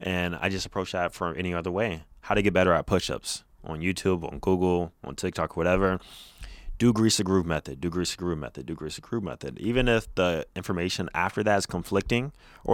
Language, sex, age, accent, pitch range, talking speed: English, male, 20-39, American, 80-100 Hz, 215 wpm